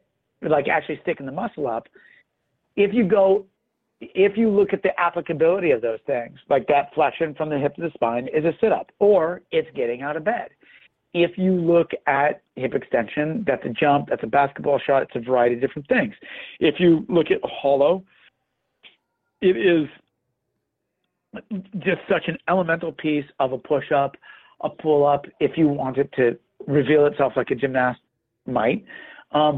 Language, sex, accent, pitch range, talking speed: English, male, American, 145-195 Hz, 170 wpm